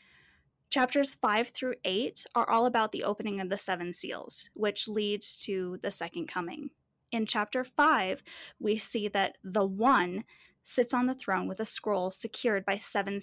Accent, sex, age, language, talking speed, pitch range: American, female, 10-29, English, 170 wpm, 195-235 Hz